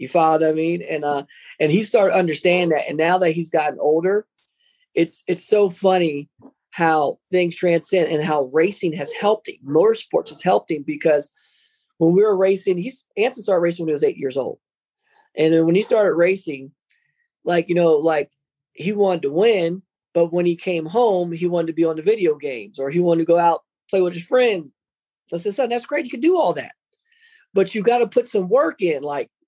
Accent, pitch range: American, 170-245 Hz